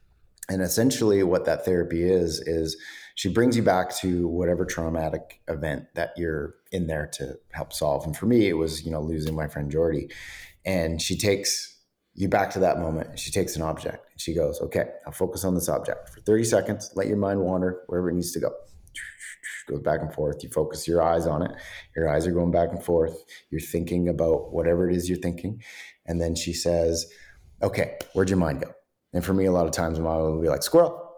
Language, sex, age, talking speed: English, male, 30-49, 215 wpm